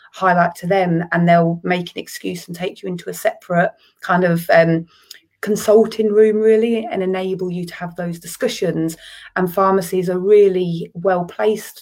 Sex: female